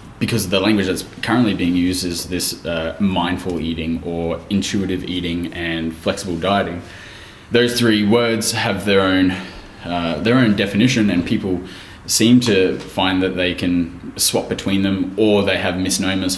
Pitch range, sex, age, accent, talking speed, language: 85-100 Hz, male, 20-39, Australian, 160 wpm, English